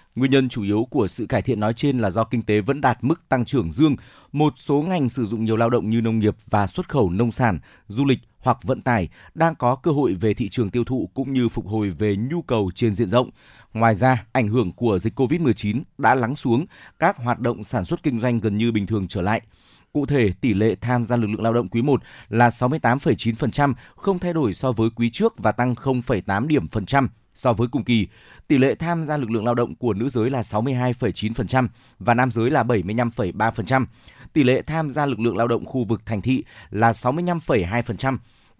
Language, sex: Vietnamese, male